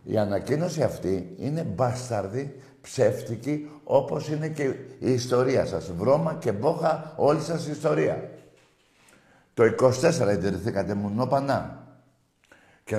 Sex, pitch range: male, 120-180 Hz